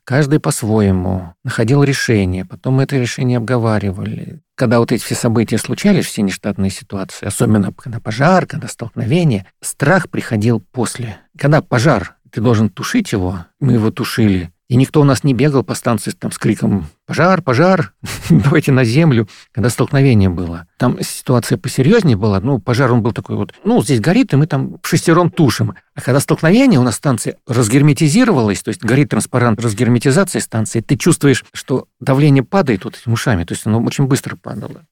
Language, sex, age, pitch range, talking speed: Russian, male, 50-69, 110-145 Hz, 170 wpm